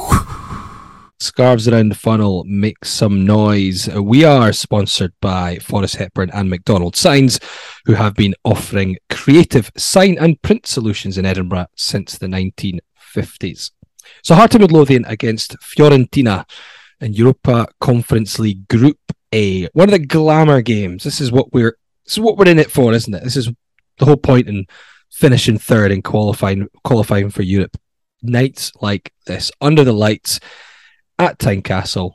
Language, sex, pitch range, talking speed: English, male, 100-140 Hz, 145 wpm